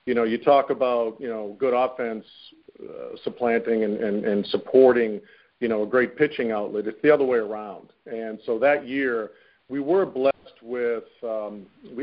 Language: English